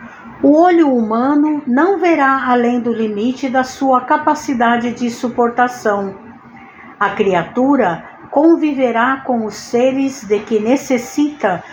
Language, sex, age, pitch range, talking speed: Portuguese, female, 60-79, 205-265 Hz, 115 wpm